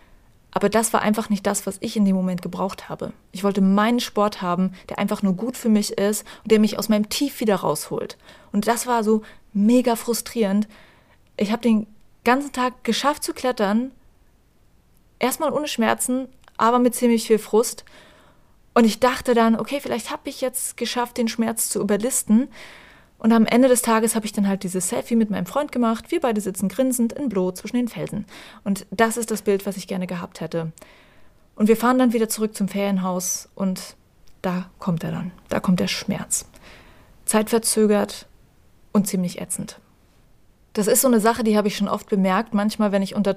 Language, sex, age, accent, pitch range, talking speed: German, female, 30-49, German, 200-240 Hz, 190 wpm